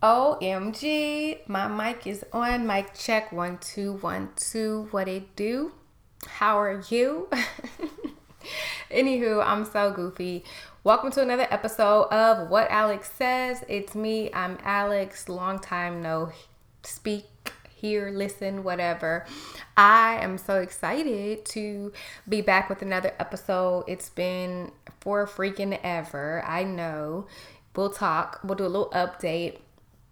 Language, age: English, 20-39